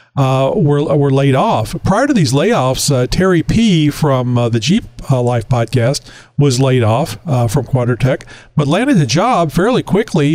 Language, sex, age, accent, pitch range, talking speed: English, male, 50-69, American, 120-155 Hz, 180 wpm